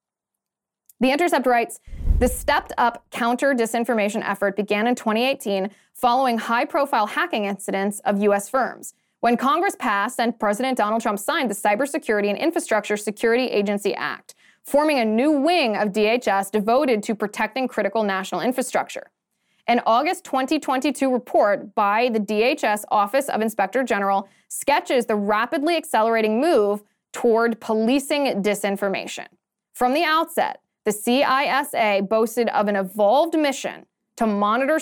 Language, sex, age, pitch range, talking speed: English, female, 20-39, 205-265 Hz, 130 wpm